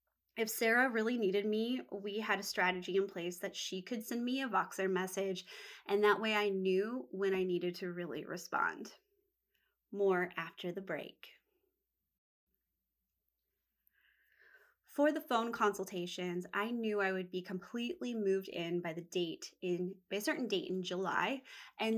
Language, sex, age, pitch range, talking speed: English, female, 20-39, 185-230 Hz, 155 wpm